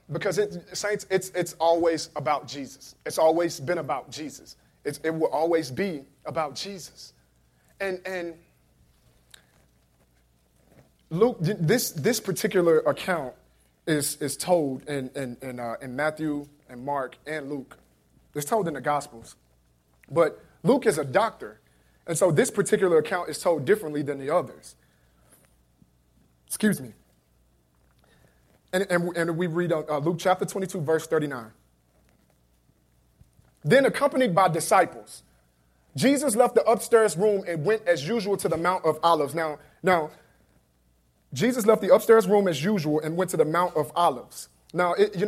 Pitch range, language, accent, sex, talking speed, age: 125-175 Hz, English, American, male, 145 wpm, 30-49